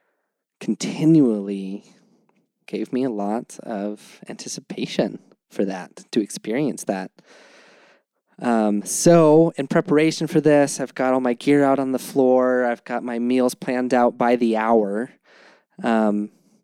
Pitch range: 110-130 Hz